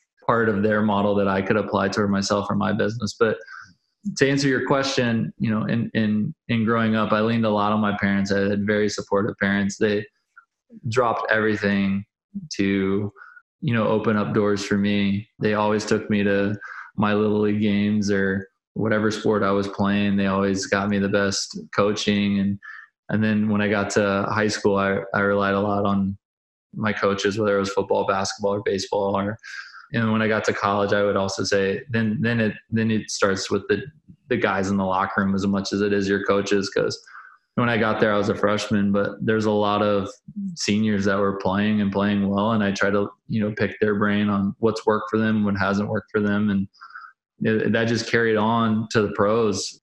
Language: English